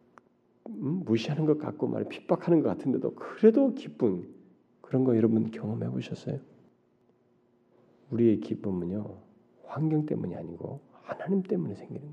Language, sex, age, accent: Korean, male, 40-59, native